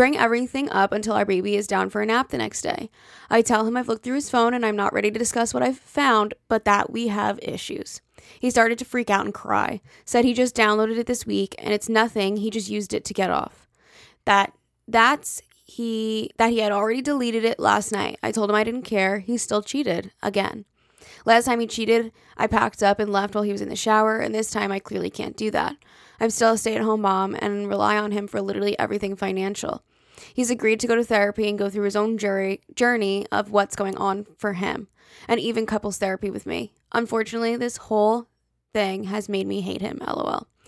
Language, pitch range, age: English, 205-230 Hz, 20-39